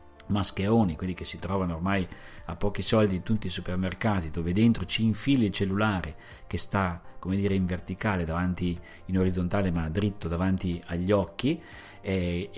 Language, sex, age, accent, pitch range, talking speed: Italian, male, 40-59, native, 90-110 Hz, 160 wpm